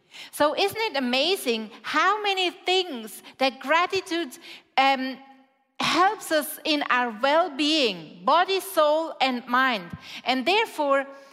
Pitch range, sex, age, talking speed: 265-335 Hz, female, 40-59, 110 wpm